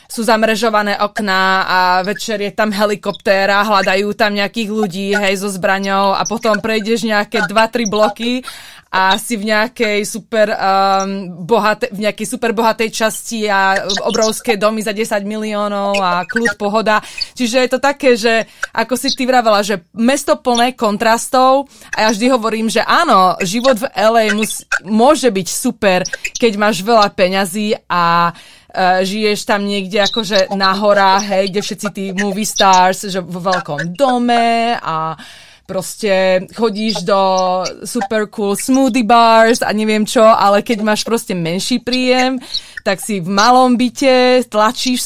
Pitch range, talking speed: 200-235 Hz, 145 wpm